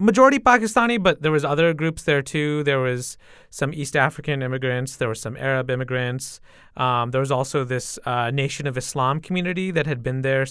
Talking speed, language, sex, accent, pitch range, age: 195 wpm, English, male, American, 125-155 Hz, 30-49